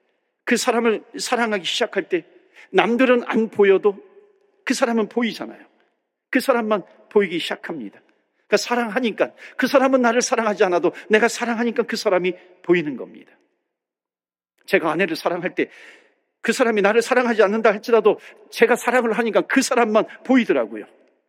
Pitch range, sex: 185-265 Hz, male